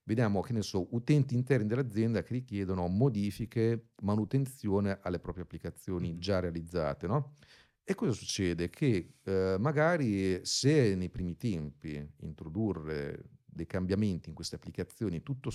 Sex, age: male, 40-59